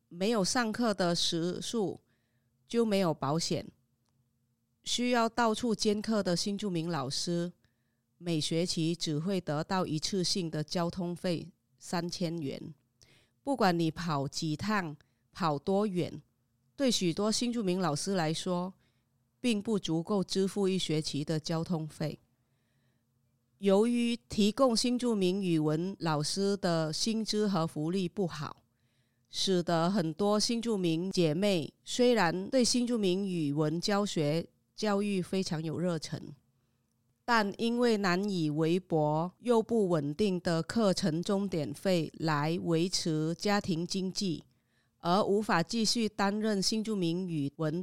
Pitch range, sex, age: 150-200 Hz, female, 30-49